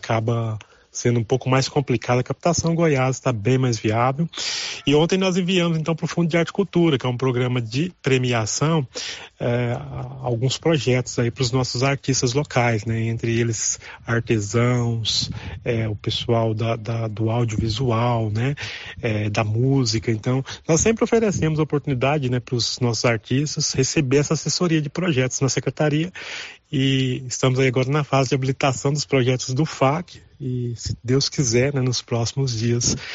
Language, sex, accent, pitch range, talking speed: Portuguese, male, Brazilian, 120-150 Hz, 155 wpm